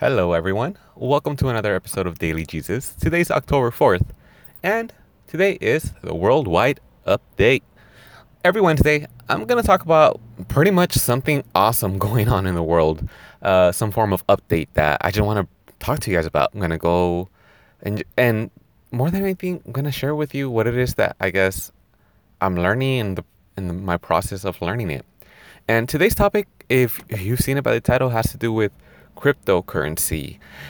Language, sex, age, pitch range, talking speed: English, male, 20-39, 95-145 Hz, 180 wpm